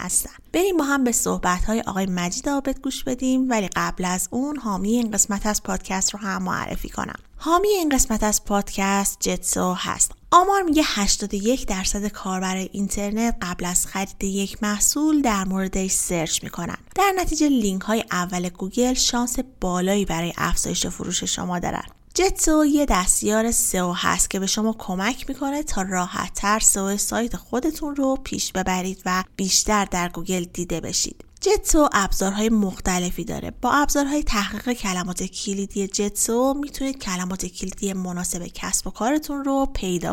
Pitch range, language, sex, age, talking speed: 190-255 Hz, Persian, female, 20-39, 155 wpm